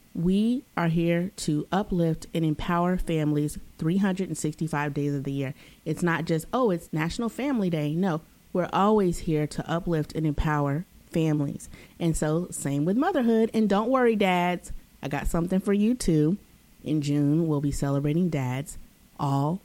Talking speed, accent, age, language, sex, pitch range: 160 wpm, American, 30-49, English, female, 160-225 Hz